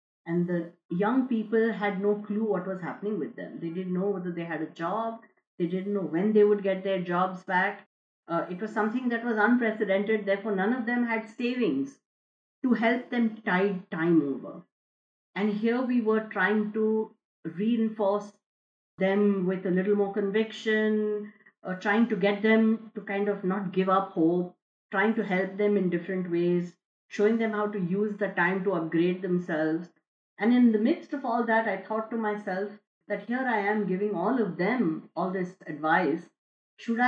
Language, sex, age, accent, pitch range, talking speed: English, female, 50-69, Indian, 180-220 Hz, 185 wpm